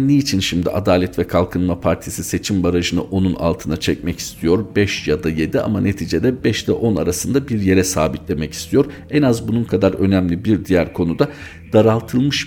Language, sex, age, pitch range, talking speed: Turkish, male, 50-69, 90-115 Hz, 175 wpm